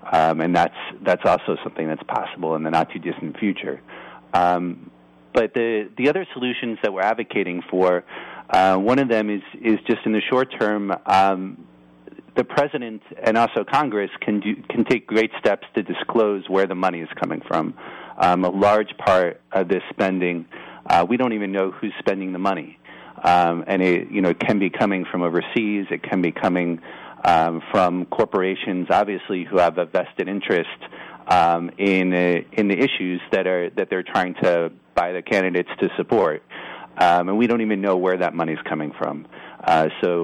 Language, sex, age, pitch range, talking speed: English, male, 40-59, 85-105 Hz, 200 wpm